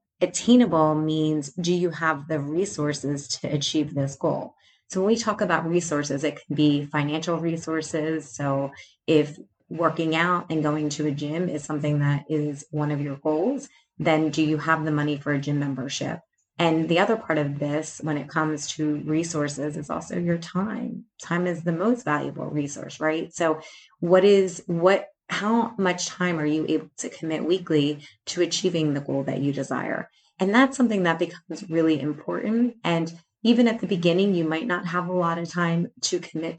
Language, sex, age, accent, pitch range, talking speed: English, female, 30-49, American, 150-180 Hz, 185 wpm